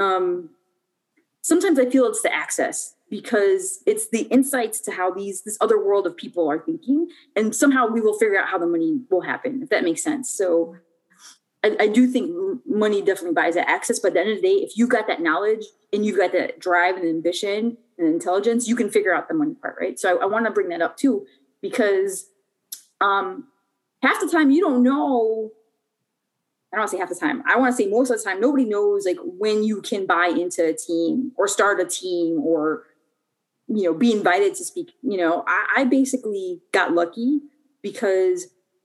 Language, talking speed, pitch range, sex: English, 210 wpm, 185-265 Hz, female